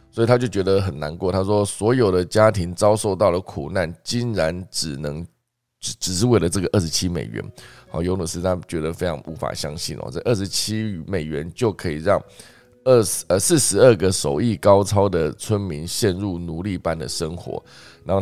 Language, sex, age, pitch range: Chinese, male, 20-39, 85-105 Hz